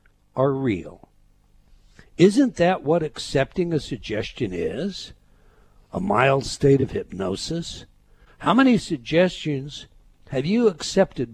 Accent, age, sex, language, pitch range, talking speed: American, 60-79, male, English, 120-175 Hz, 105 wpm